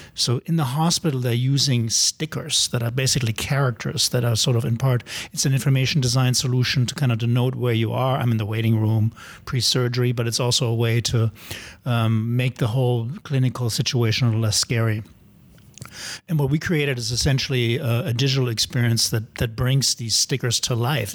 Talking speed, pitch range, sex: 195 wpm, 115-140 Hz, male